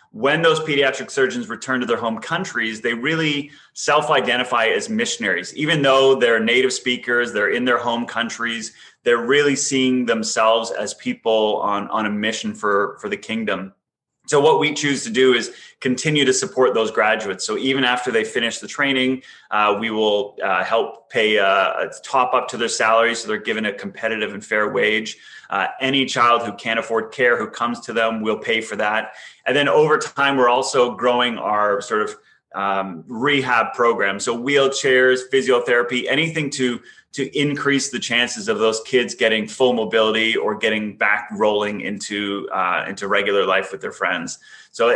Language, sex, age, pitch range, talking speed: English, male, 30-49, 110-135 Hz, 180 wpm